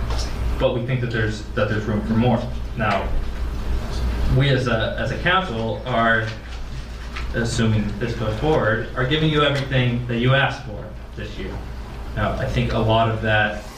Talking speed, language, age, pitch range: 170 wpm, English, 20-39, 105-120 Hz